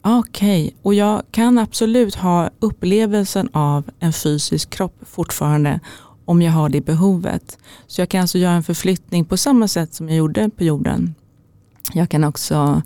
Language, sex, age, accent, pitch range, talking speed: Swedish, female, 30-49, native, 155-190 Hz, 170 wpm